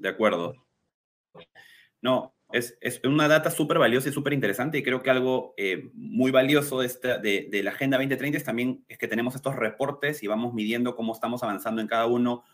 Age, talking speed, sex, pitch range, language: 30-49, 200 wpm, male, 115-145 Hz, Spanish